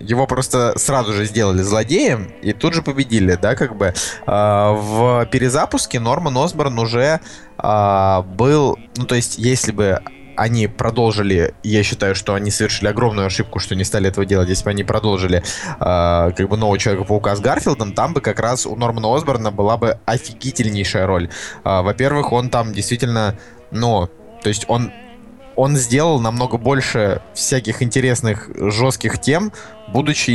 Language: Russian